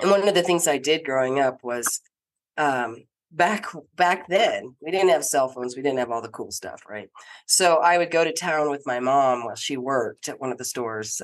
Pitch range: 130-175 Hz